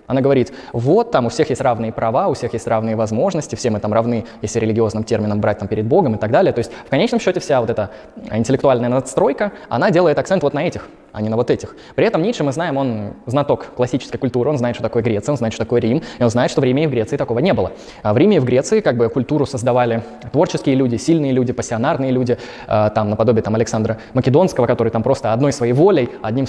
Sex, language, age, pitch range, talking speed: male, Russian, 20-39, 120-150 Hz, 245 wpm